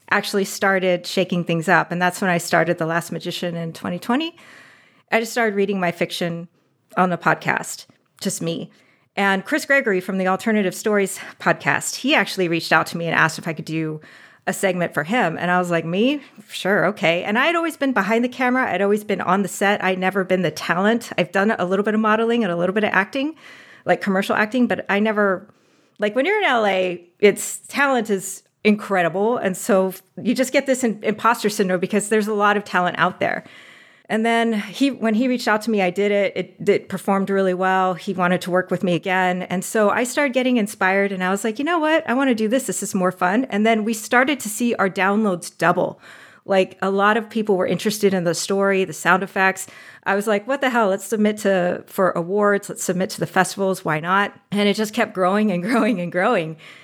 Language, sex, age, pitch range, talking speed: English, female, 40-59, 180-225 Hz, 225 wpm